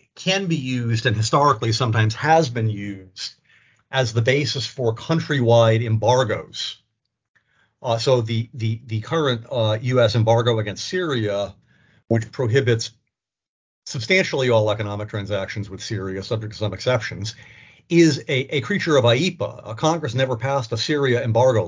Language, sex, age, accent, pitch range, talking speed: English, male, 50-69, American, 110-135 Hz, 140 wpm